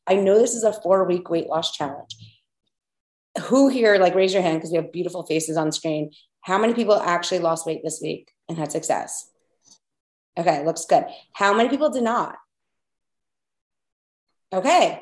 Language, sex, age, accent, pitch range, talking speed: English, female, 30-49, American, 170-225 Hz, 170 wpm